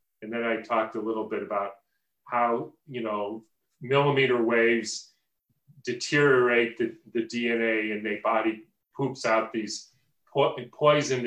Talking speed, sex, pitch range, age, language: 130 wpm, male, 115-145 Hz, 40-59, English